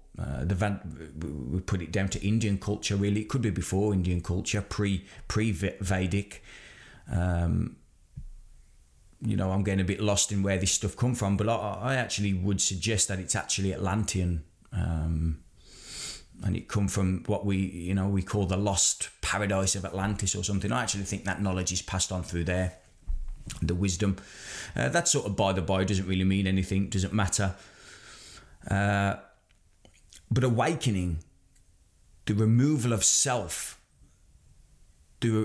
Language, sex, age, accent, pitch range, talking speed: English, male, 20-39, British, 90-110 Hz, 155 wpm